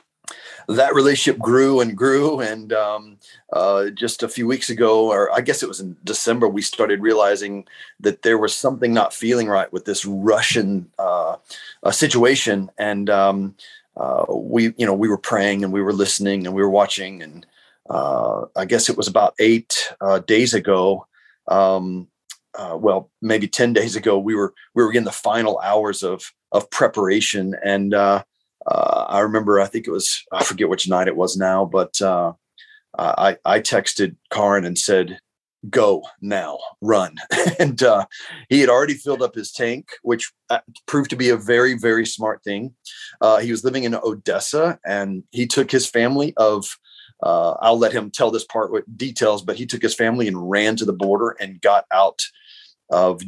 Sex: male